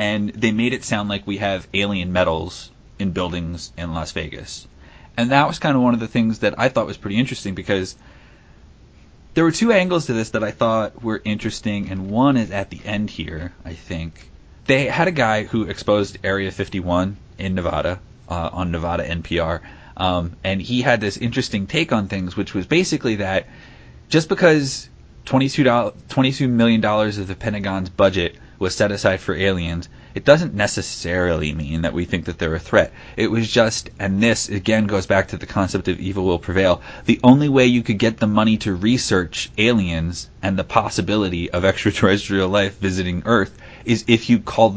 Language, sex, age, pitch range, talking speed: English, male, 30-49, 90-115 Hz, 190 wpm